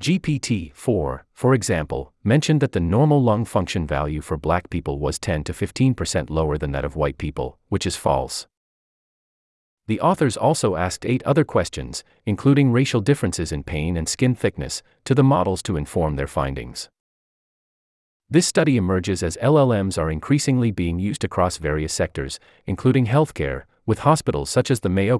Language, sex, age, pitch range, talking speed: English, male, 40-59, 75-125 Hz, 165 wpm